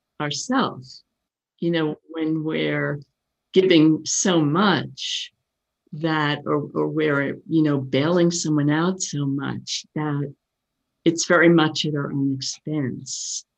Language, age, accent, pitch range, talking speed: English, 50-69, American, 145-170 Hz, 120 wpm